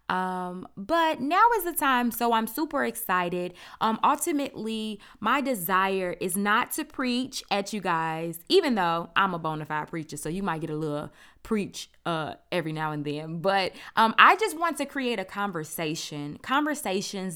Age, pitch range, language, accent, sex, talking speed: 20-39, 175-245 Hz, English, American, female, 175 wpm